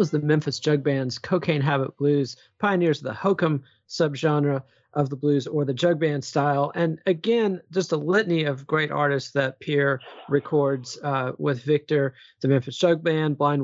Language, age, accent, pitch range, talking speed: English, 40-59, American, 140-165 Hz, 175 wpm